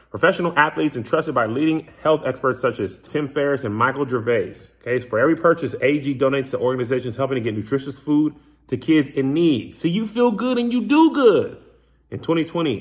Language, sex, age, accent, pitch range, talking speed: English, male, 30-49, American, 125-180 Hz, 190 wpm